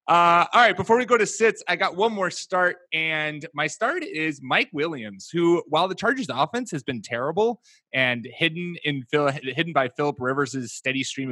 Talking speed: 190 wpm